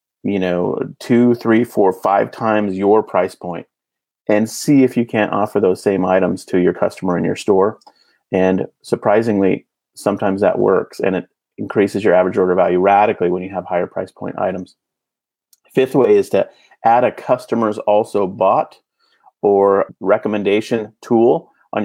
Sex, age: male, 30-49